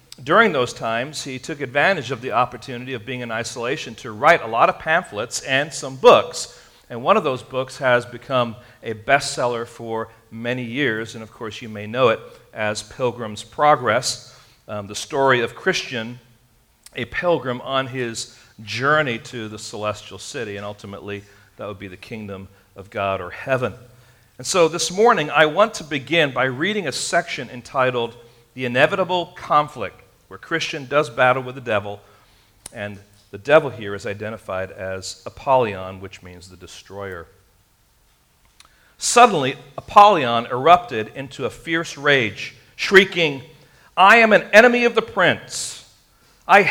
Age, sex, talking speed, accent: 40-59, male, 155 wpm, American